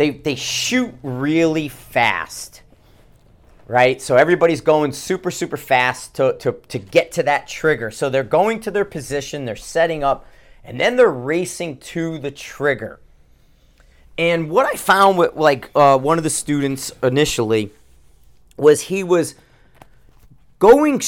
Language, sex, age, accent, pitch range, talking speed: English, male, 40-59, American, 135-175 Hz, 145 wpm